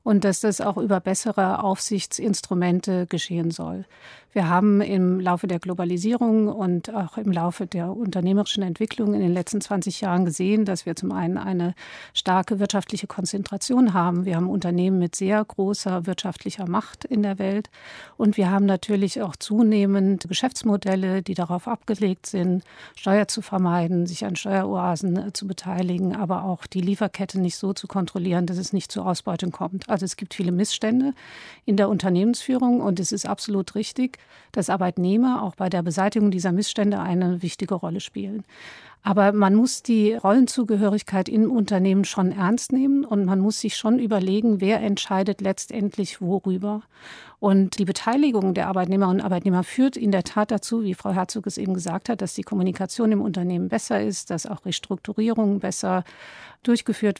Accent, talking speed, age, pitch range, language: German, 165 wpm, 50-69, 185-210 Hz, German